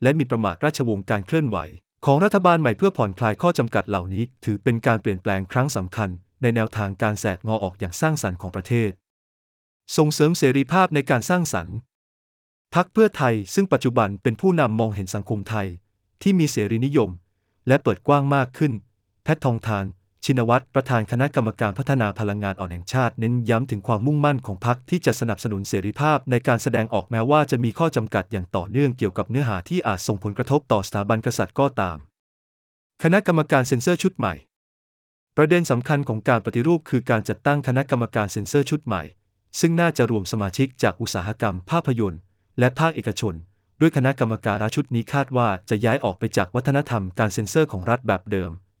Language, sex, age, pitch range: English, male, 30-49, 100-140 Hz